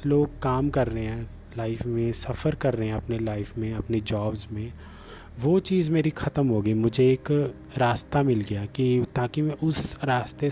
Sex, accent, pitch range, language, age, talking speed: male, native, 110-140 Hz, Hindi, 30-49, 190 wpm